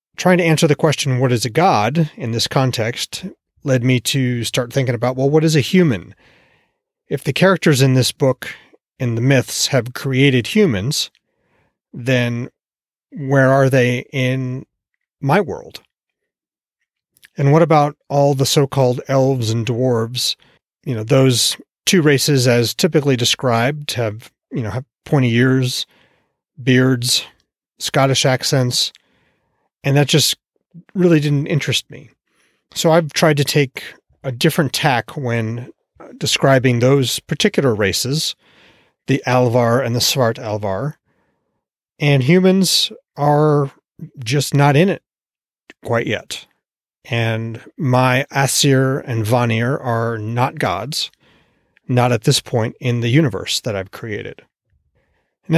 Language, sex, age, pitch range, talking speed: English, male, 30-49, 125-150 Hz, 130 wpm